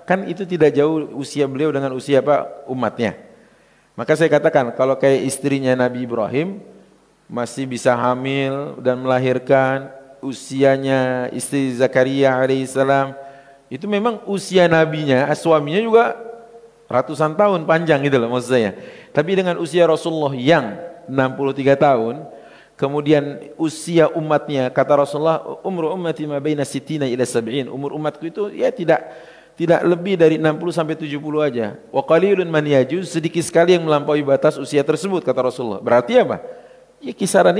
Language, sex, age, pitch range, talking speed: English, male, 40-59, 130-160 Hz, 130 wpm